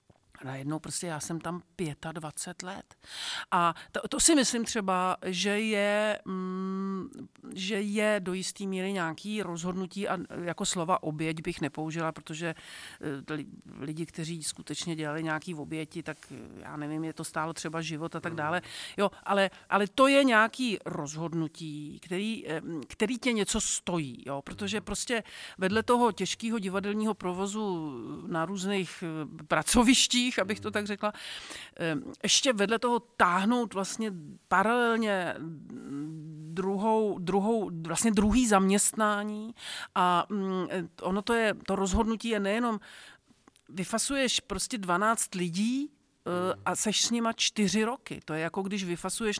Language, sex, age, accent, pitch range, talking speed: Czech, male, 50-69, native, 165-215 Hz, 135 wpm